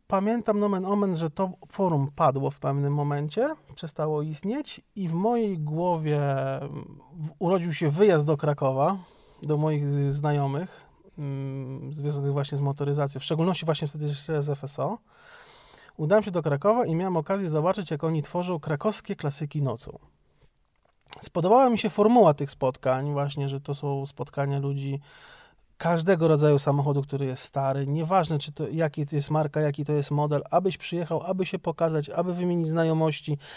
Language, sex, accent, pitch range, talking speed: Polish, male, native, 145-185 Hz, 155 wpm